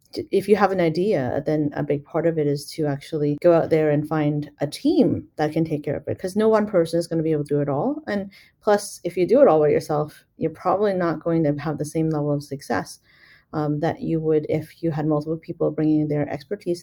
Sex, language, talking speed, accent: female, English, 255 wpm, American